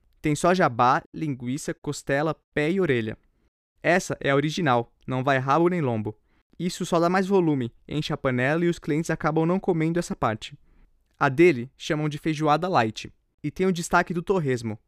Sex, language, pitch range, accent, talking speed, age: male, Portuguese, 130-170 Hz, Brazilian, 180 wpm, 20-39